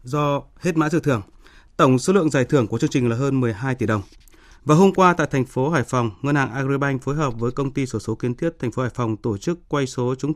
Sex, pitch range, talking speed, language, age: male, 120-150 Hz, 285 wpm, Vietnamese, 20-39